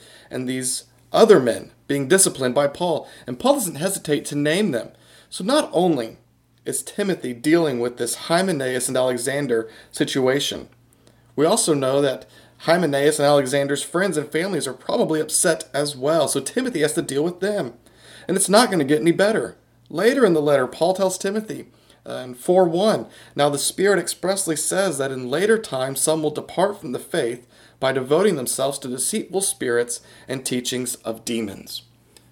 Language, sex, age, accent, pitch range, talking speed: English, male, 40-59, American, 120-165 Hz, 170 wpm